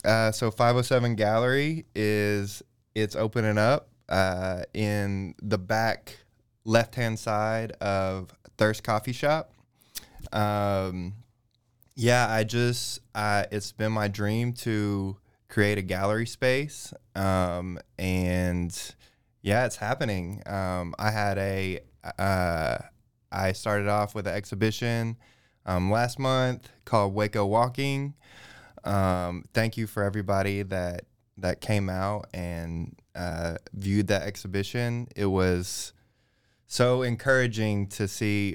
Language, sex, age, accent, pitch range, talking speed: English, male, 20-39, American, 95-115 Hz, 115 wpm